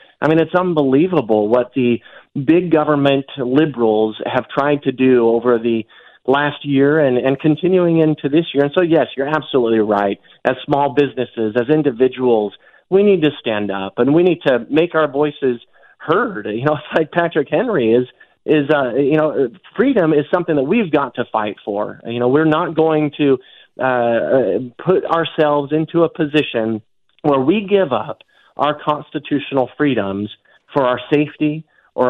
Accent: American